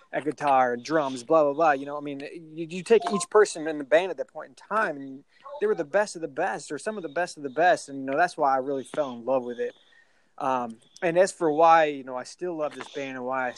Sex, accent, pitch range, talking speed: male, American, 135-170 Hz, 290 wpm